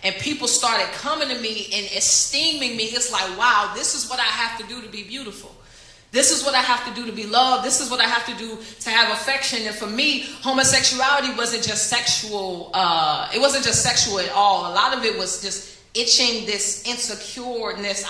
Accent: American